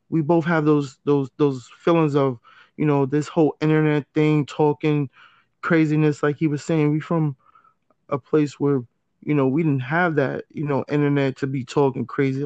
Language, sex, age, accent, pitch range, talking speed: English, male, 20-39, American, 140-165 Hz, 185 wpm